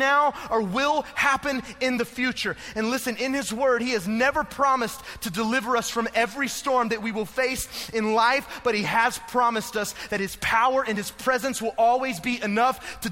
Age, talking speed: 30-49, 200 wpm